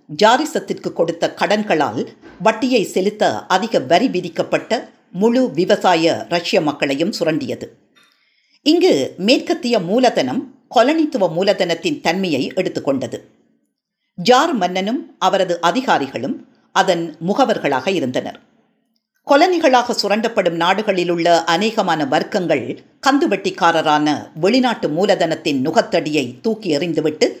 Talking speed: 85 wpm